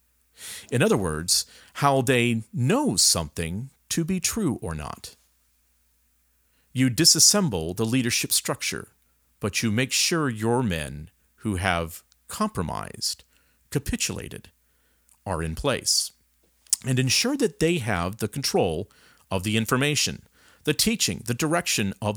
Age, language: 50-69, English